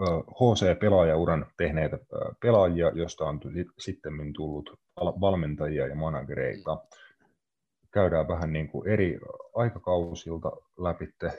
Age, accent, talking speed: 30-49, native, 85 wpm